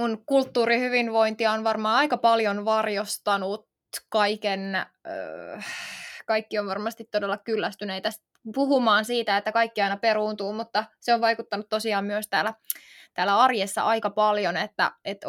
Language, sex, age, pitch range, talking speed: Finnish, female, 20-39, 210-255 Hz, 130 wpm